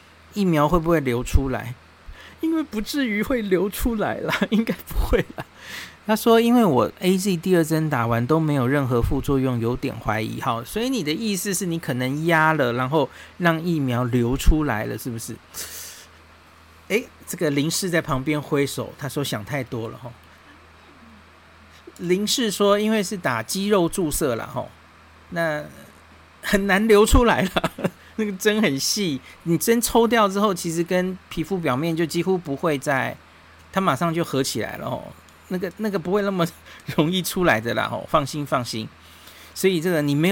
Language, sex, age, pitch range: Chinese, male, 50-69, 120-185 Hz